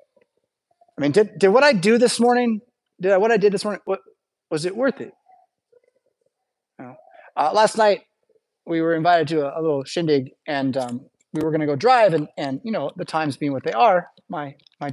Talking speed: 215 wpm